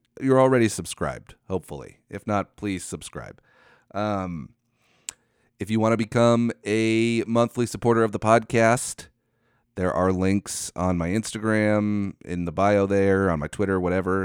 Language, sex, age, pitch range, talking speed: English, male, 30-49, 90-115 Hz, 145 wpm